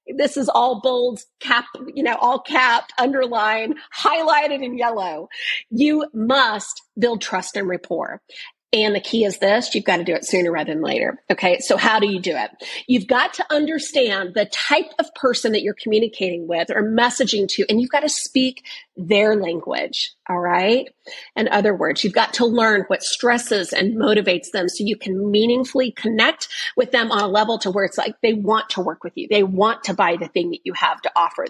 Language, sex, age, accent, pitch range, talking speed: English, female, 40-59, American, 195-265 Hz, 205 wpm